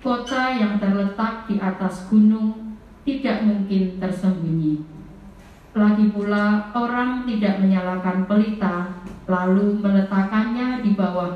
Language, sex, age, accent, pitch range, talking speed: Indonesian, female, 40-59, native, 185-215 Hz, 95 wpm